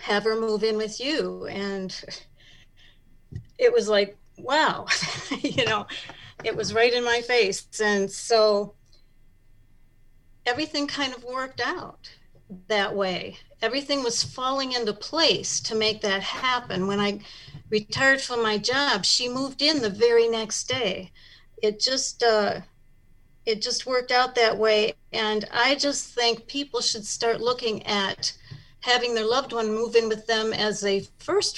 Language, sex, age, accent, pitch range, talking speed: English, female, 50-69, American, 205-250 Hz, 150 wpm